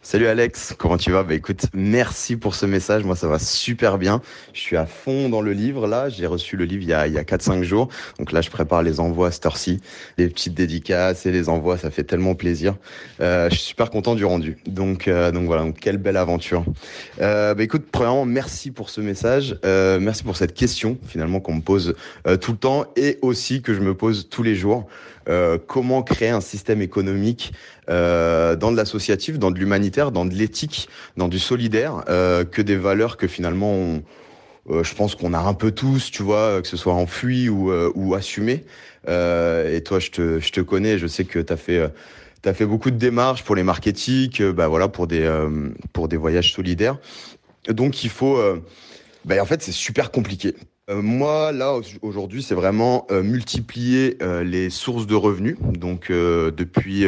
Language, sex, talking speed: French, male, 210 wpm